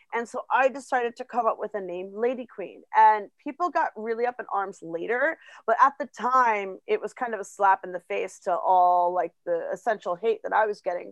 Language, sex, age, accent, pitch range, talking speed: English, female, 30-49, American, 190-255 Hz, 230 wpm